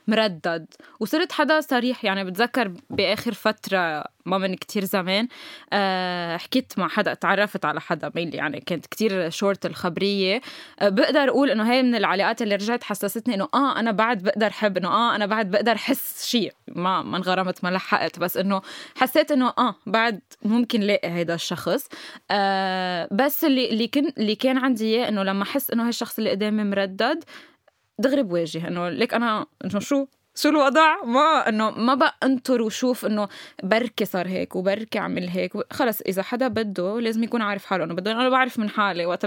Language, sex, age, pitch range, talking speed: Arabic, female, 10-29, 190-245 Hz, 175 wpm